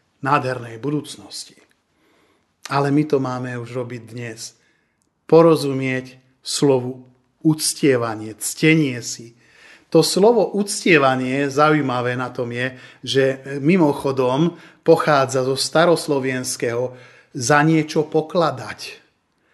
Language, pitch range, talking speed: Slovak, 130-170 Hz, 90 wpm